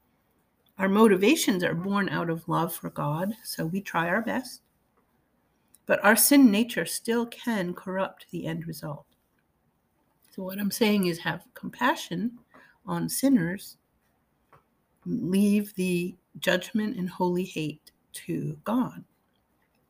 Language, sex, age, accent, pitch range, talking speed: English, female, 50-69, American, 170-235 Hz, 125 wpm